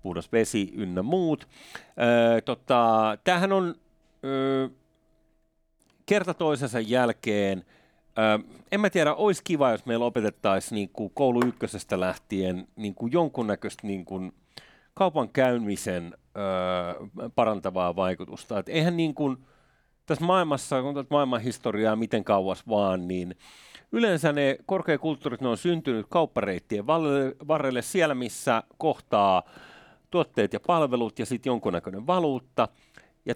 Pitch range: 110-150 Hz